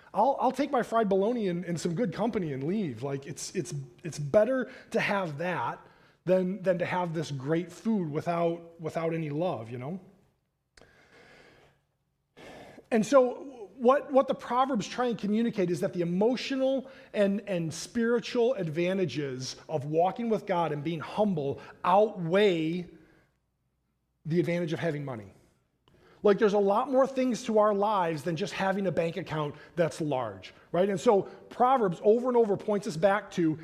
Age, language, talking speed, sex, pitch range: 20-39, English, 165 wpm, male, 170-230 Hz